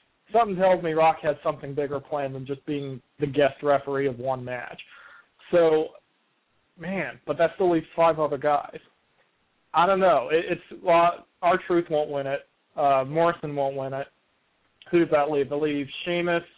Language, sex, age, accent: English, male, 40-59, American